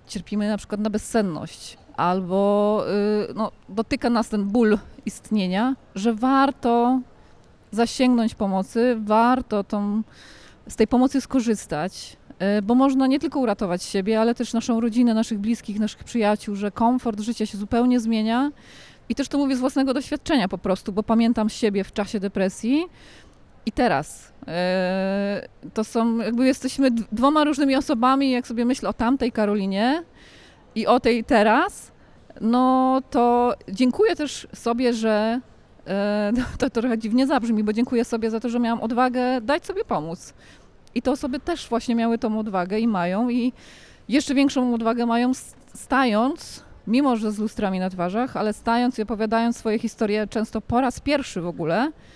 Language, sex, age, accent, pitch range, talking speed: Polish, female, 20-39, native, 210-255 Hz, 150 wpm